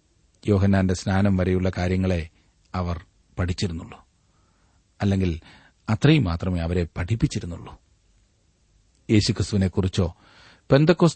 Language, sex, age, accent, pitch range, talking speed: Malayalam, male, 40-59, native, 95-130 Hz, 70 wpm